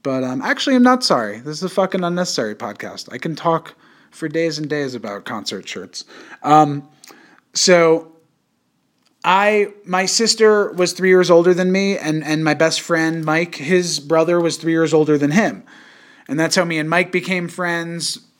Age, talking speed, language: 30-49, 180 wpm, English